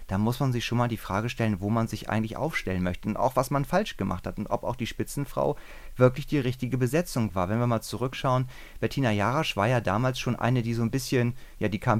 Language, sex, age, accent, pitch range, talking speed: German, male, 30-49, German, 105-130 Hz, 250 wpm